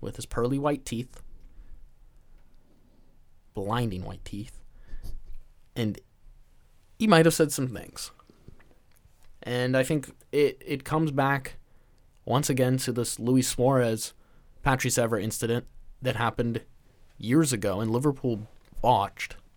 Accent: American